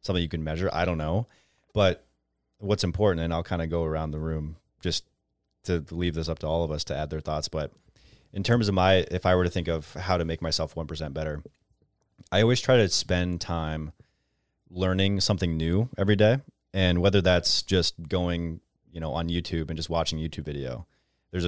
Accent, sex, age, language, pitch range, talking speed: American, male, 30-49, English, 80-95 Hz, 205 wpm